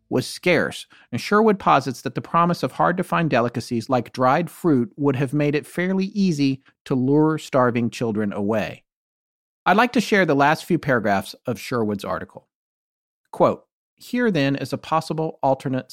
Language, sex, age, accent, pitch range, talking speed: English, male, 40-59, American, 115-160 Hz, 160 wpm